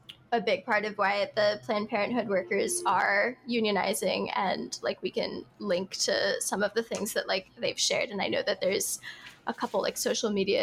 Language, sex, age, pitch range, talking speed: English, female, 10-29, 205-255 Hz, 200 wpm